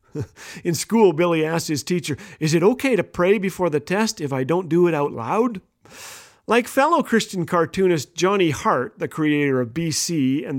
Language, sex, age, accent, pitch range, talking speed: English, male, 40-59, American, 150-210 Hz, 180 wpm